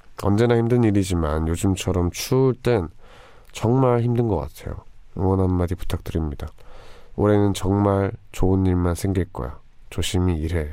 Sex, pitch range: male, 85-110 Hz